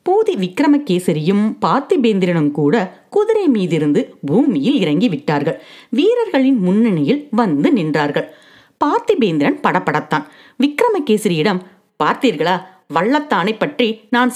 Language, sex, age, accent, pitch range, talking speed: Tamil, female, 30-49, native, 185-270 Hz, 80 wpm